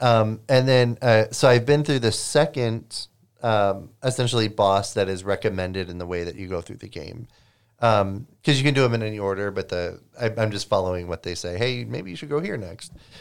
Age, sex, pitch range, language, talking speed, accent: 30-49, male, 100-125 Hz, English, 225 wpm, American